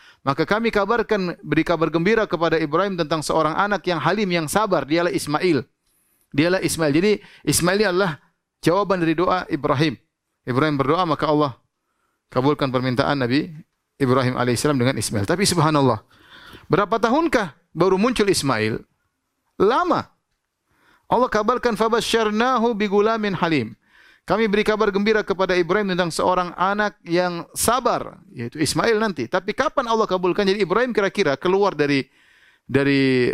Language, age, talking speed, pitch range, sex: Indonesian, 30-49, 135 wpm, 150-210 Hz, male